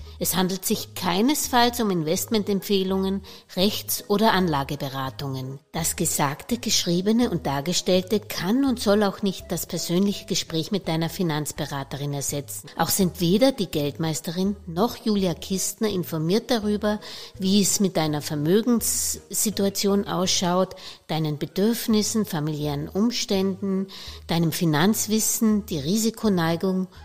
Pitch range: 155-210 Hz